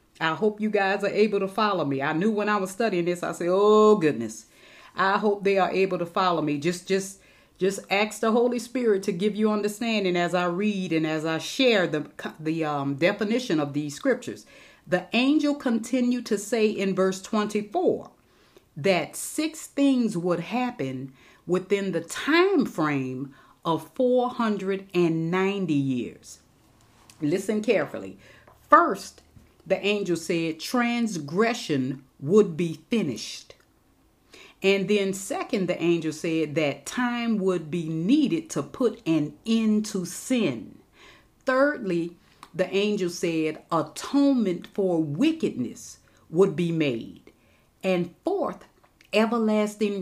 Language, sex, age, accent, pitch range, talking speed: English, female, 40-59, American, 165-220 Hz, 135 wpm